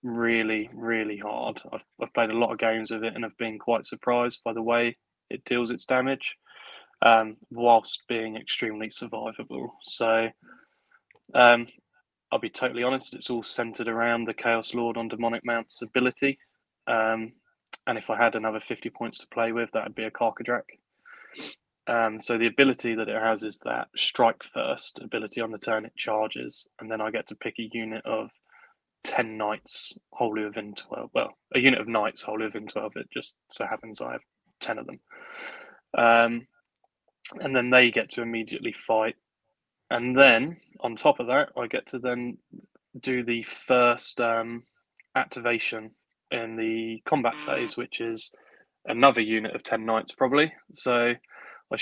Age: 20-39